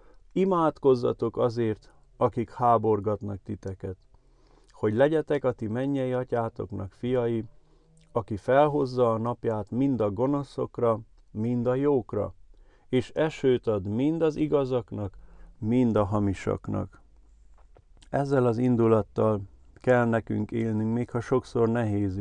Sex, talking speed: male, 110 wpm